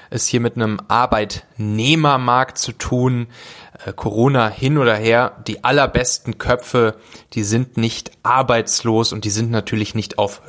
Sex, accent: male, German